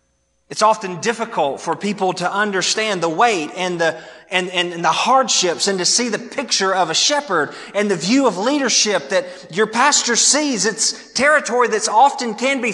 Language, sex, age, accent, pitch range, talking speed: English, male, 30-49, American, 175-255 Hz, 185 wpm